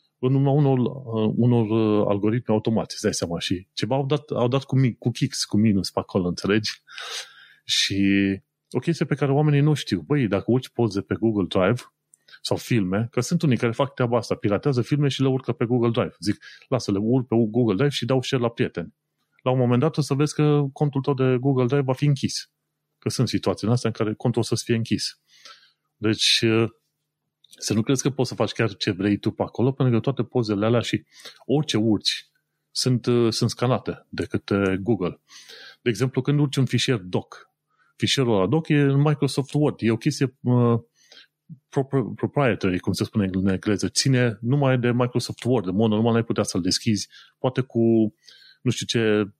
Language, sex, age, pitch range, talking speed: Romanian, male, 30-49, 105-135 Hz, 195 wpm